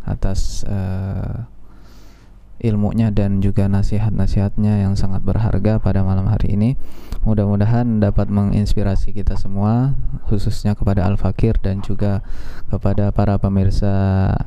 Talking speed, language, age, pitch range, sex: 110 wpm, Indonesian, 20-39, 100-115 Hz, male